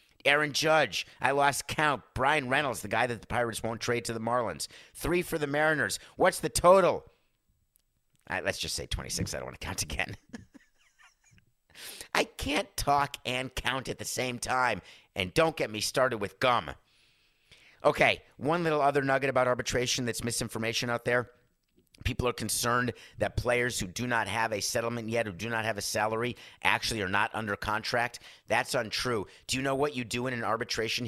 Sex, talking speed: male, 185 wpm